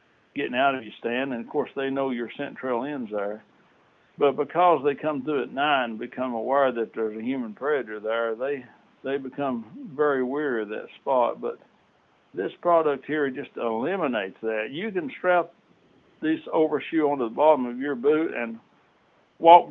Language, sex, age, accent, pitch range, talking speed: English, male, 60-79, American, 125-170 Hz, 175 wpm